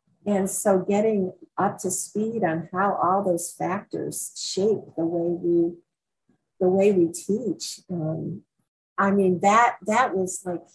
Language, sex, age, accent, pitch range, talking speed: English, female, 50-69, American, 170-200 Hz, 145 wpm